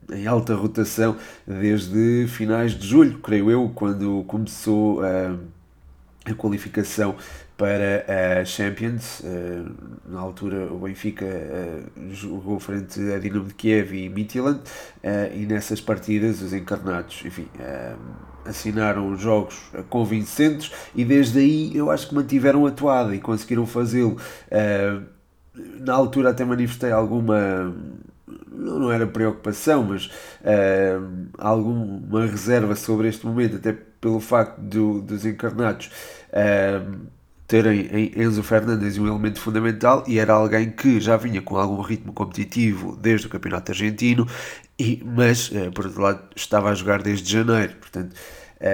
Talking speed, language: 120 wpm, Portuguese